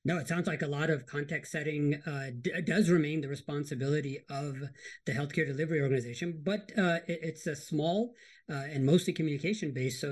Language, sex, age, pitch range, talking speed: English, male, 40-59, 145-180 Hz, 190 wpm